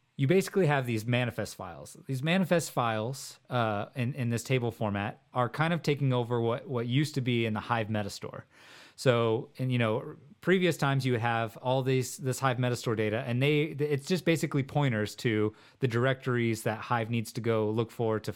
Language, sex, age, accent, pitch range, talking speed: English, male, 30-49, American, 110-135 Hz, 200 wpm